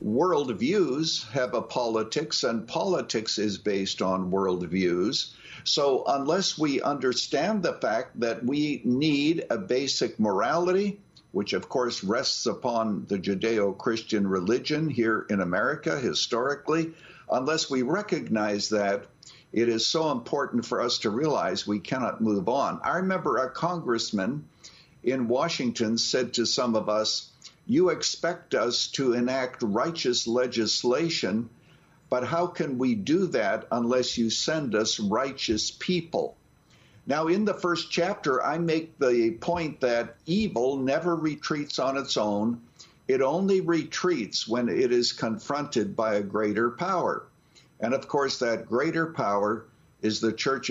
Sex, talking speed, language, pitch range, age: male, 140 wpm, English, 110-160 Hz, 60-79